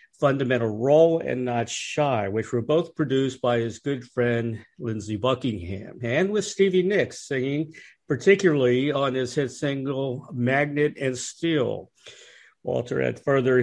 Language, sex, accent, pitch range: English, male, American, 115-140 Hz